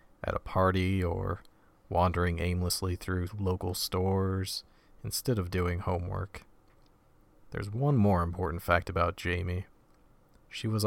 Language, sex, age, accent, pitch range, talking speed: English, male, 40-59, American, 90-105 Hz, 120 wpm